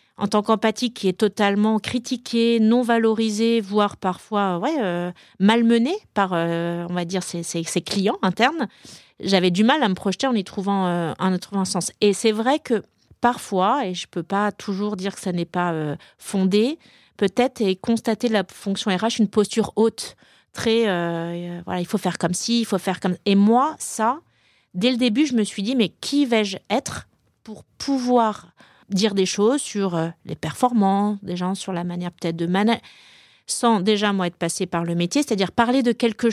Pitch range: 185-230 Hz